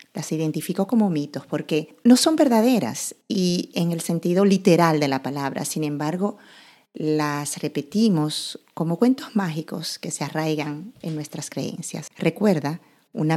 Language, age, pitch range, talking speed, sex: Spanish, 40-59, 150-195 Hz, 140 wpm, female